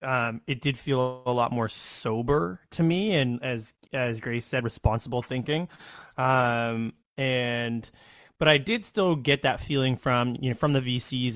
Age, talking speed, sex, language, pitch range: 20-39, 170 wpm, male, English, 115-135 Hz